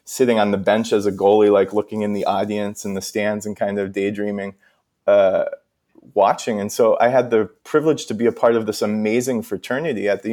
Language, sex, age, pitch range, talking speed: English, male, 20-39, 105-125 Hz, 215 wpm